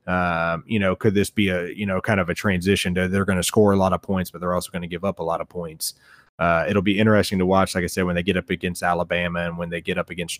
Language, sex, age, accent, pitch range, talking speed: English, male, 30-49, American, 85-100 Hz, 305 wpm